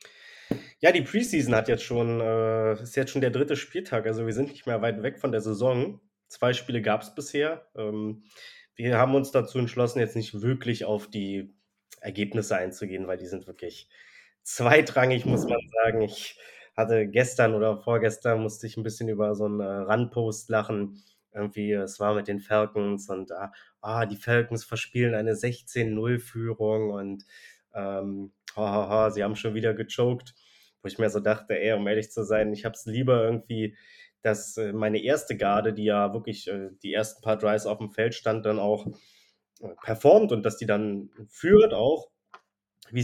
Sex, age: male, 20-39